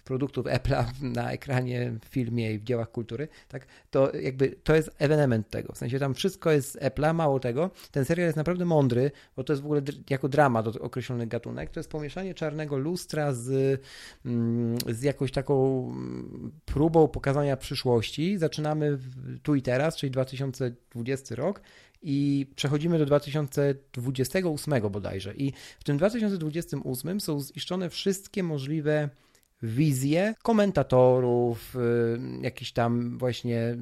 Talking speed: 140 wpm